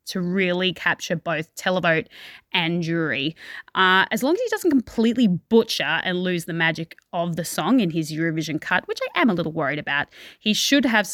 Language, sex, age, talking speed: English, female, 20-39, 190 wpm